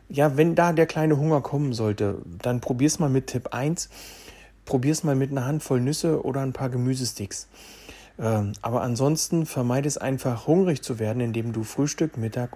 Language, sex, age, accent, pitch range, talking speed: German, male, 40-59, German, 115-155 Hz, 175 wpm